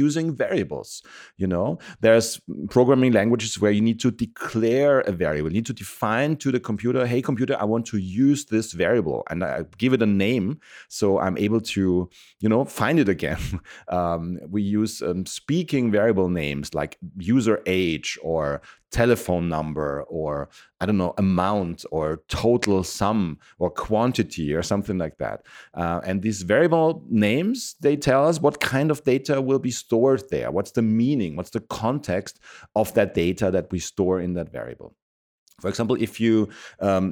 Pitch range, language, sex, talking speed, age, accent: 95-130 Hz, English, male, 175 wpm, 30-49, German